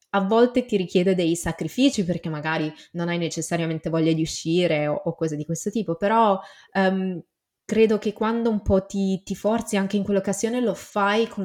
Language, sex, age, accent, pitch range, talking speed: Italian, female, 20-39, native, 170-210 Hz, 190 wpm